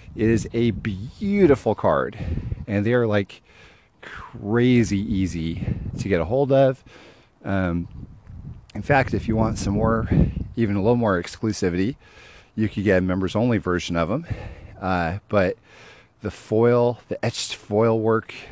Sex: male